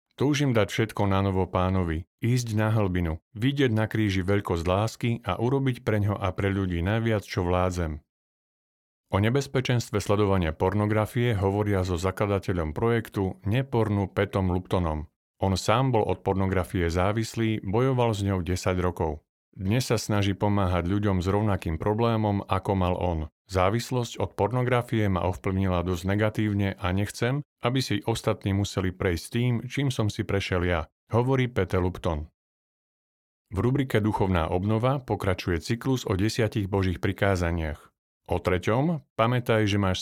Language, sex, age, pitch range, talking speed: Slovak, male, 50-69, 95-115 Hz, 140 wpm